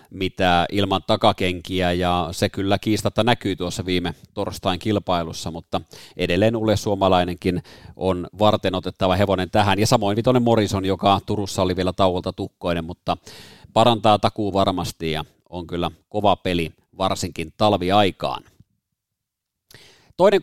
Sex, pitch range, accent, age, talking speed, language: male, 95-105 Hz, native, 30-49, 125 wpm, Finnish